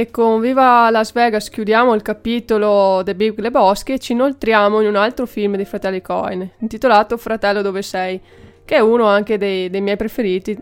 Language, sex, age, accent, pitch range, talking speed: Italian, female, 20-39, native, 200-220 Hz, 190 wpm